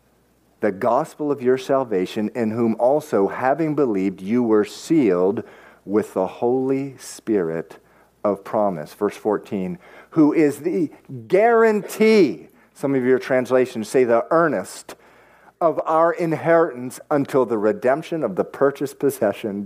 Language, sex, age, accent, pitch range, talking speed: English, male, 50-69, American, 110-160 Hz, 130 wpm